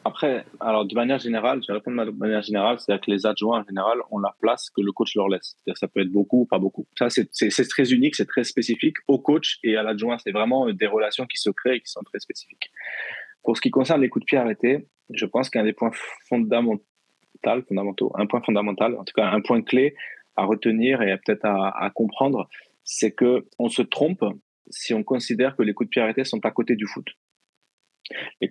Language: French